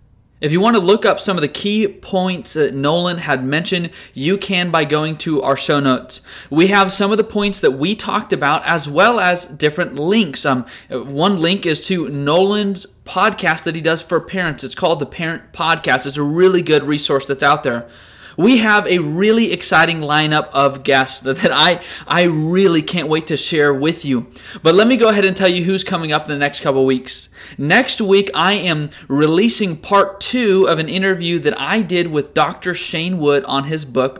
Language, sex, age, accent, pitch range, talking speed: English, male, 20-39, American, 150-195 Hz, 205 wpm